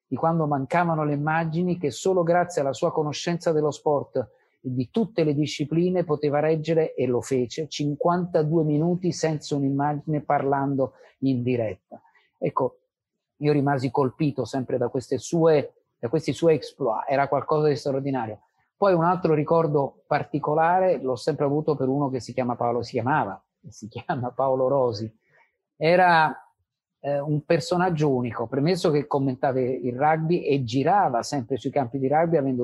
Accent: native